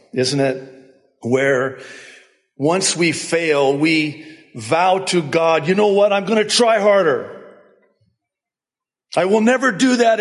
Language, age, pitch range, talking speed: English, 50-69, 130-220 Hz, 135 wpm